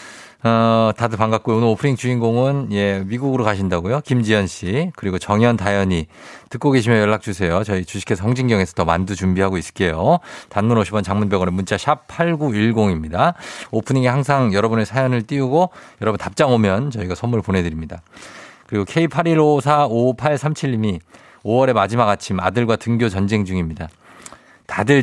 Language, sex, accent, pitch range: Korean, male, native, 100-135 Hz